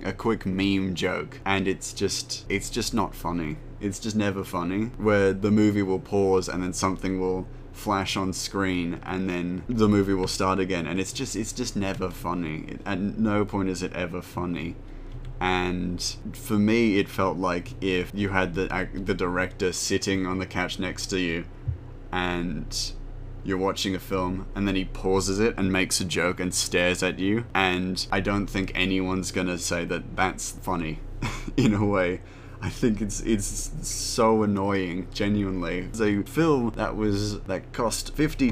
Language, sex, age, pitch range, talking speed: English, male, 20-39, 95-110 Hz, 175 wpm